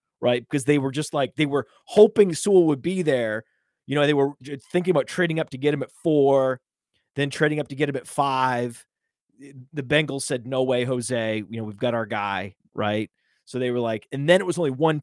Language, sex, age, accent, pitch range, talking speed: English, male, 30-49, American, 120-155 Hz, 230 wpm